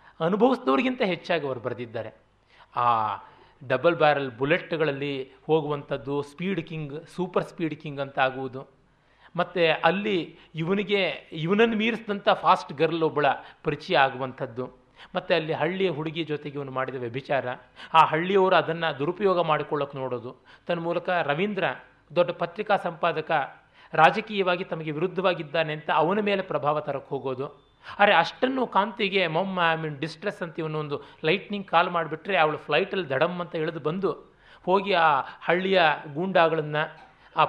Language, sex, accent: Kannada, male, native